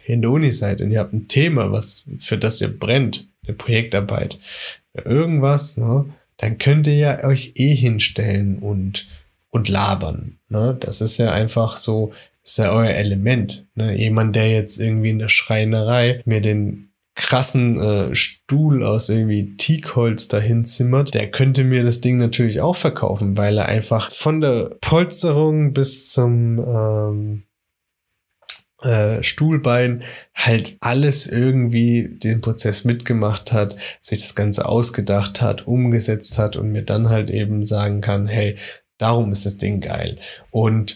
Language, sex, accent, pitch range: German, male, German, 105-130 Hz